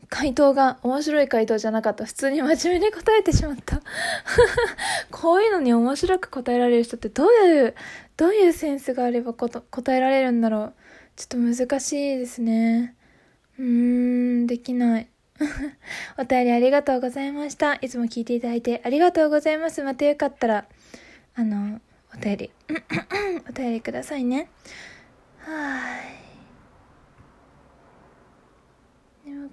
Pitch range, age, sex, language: 235-285 Hz, 20-39, female, Japanese